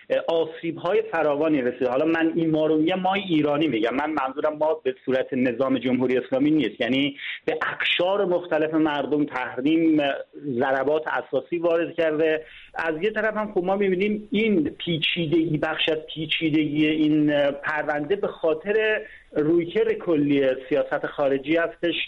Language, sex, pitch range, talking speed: Persian, male, 150-180 Hz, 140 wpm